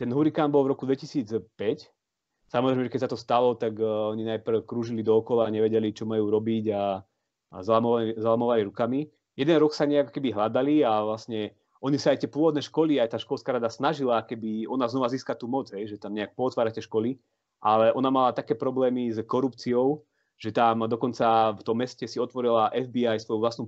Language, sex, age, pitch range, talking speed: Slovak, male, 30-49, 110-130 Hz, 195 wpm